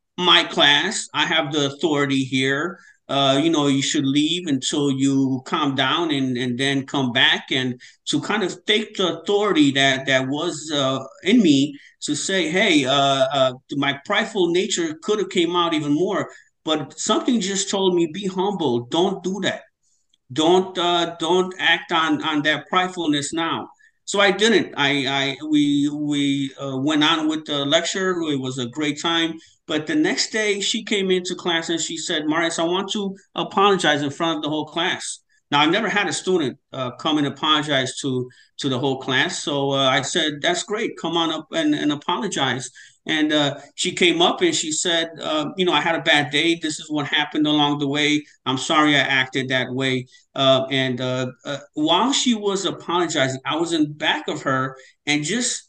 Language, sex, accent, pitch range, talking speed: English, male, American, 140-190 Hz, 195 wpm